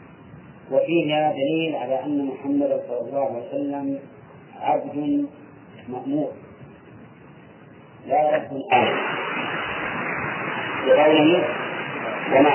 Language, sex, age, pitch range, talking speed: Arabic, male, 40-59, 140-180 Hz, 75 wpm